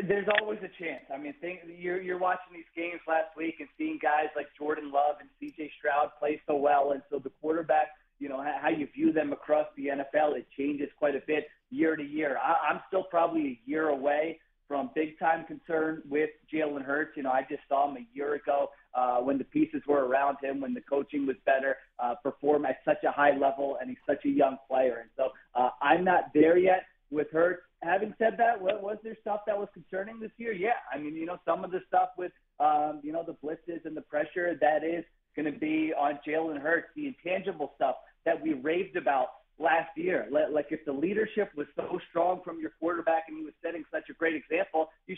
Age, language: 30-49, English